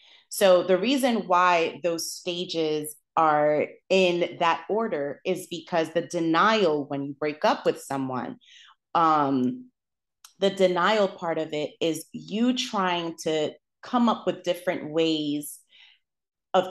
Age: 30-49